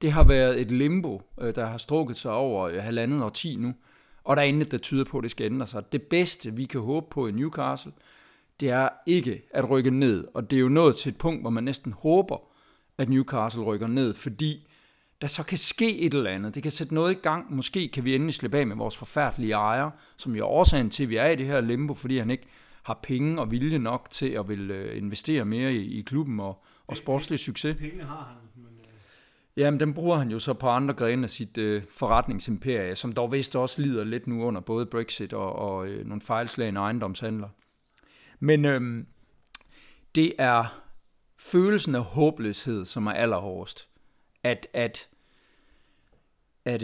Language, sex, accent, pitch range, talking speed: Danish, male, native, 115-145 Hz, 190 wpm